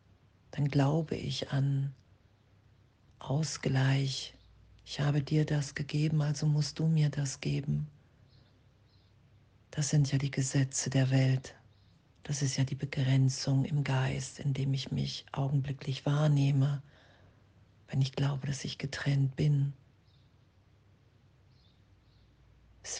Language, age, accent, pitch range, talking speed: German, 40-59, German, 110-145 Hz, 115 wpm